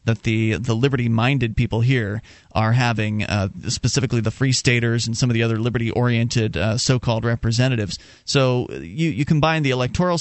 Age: 30-49